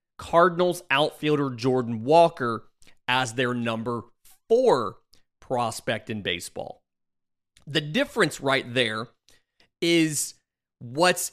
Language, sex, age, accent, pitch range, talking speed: English, male, 30-49, American, 120-155 Hz, 90 wpm